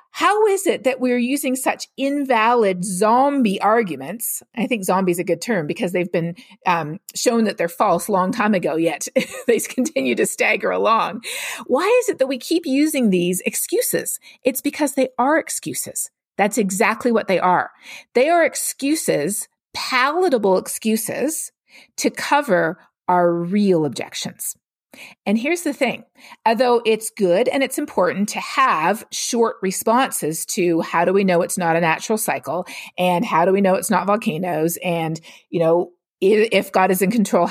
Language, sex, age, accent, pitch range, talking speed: English, female, 40-59, American, 180-260 Hz, 165 wpm